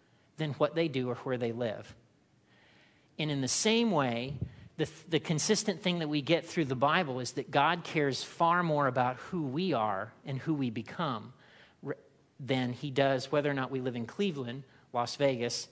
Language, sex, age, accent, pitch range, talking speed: English, male, 40-59, American, 140-185 Hz, 185 wpm